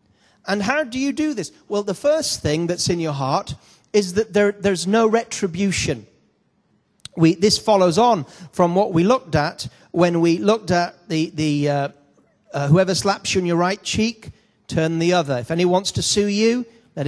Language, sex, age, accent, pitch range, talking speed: English, male, 40-59, British, 160-215 Hz, 190 wpm